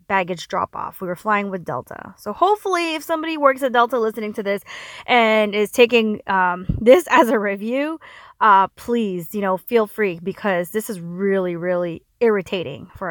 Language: English